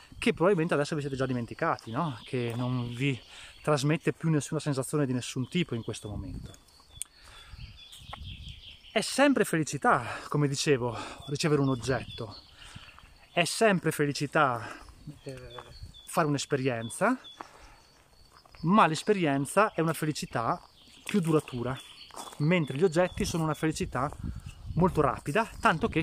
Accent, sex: native, male